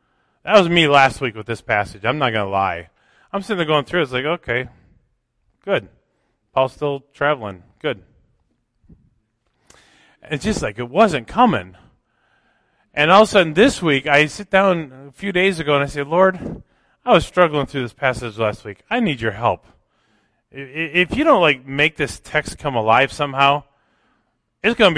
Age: 30-49